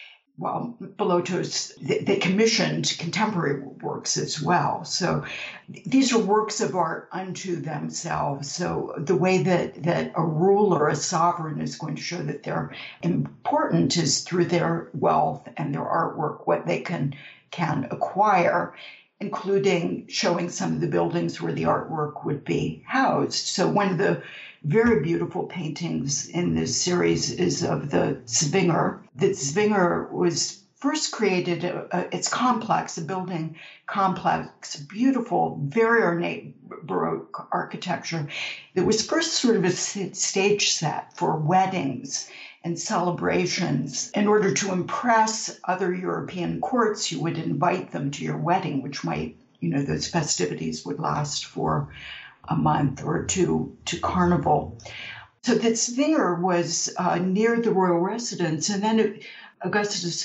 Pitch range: 155-205 Hz